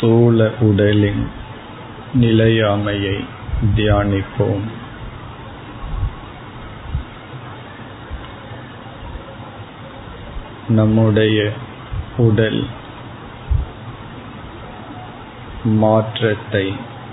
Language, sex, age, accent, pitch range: Tamil, male, 50-69, native, 105-120 Hz